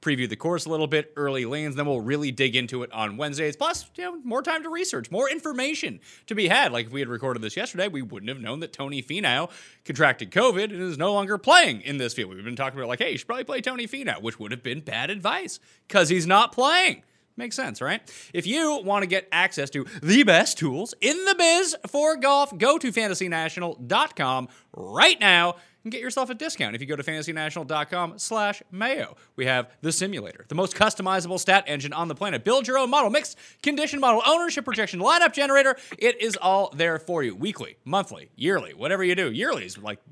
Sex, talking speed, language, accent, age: male, 220 wpm, English, American, 30-49